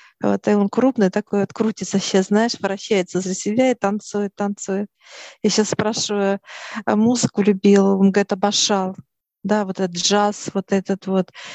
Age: 40-59